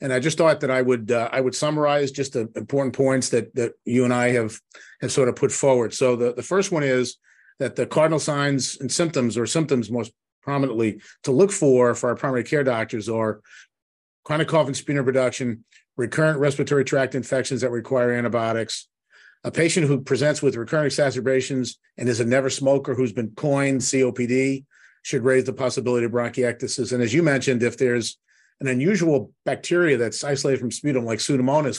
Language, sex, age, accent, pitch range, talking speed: English, male, 50-69, American, 120-140 Hz, 190 wpm